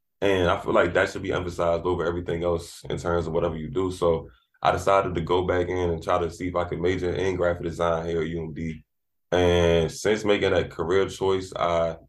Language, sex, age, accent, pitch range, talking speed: English, male, 20-39, American, 85-90 Hz, 225 wpm